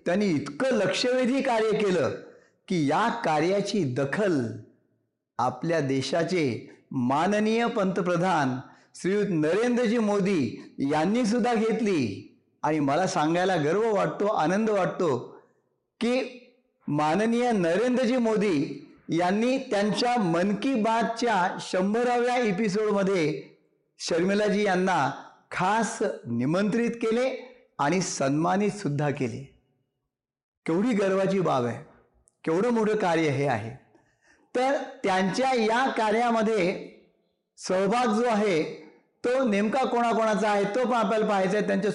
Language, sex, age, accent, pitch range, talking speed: Marathi, male, 50-69, native, 180-235 Hz, 85 wpm